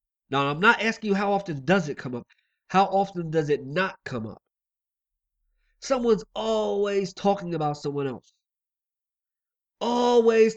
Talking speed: 140 wpm